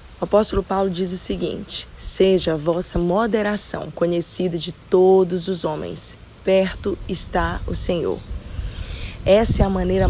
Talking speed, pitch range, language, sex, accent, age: 135 wpm, 170-205 Hz, Portuguese, female, Brazilian, 20-39